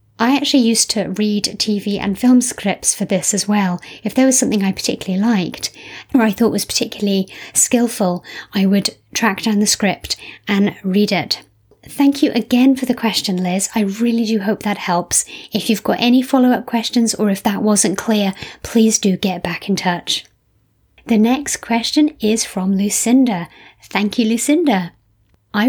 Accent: British